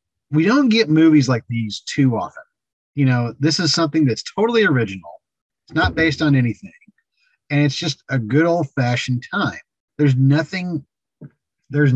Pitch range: 120-155 Hz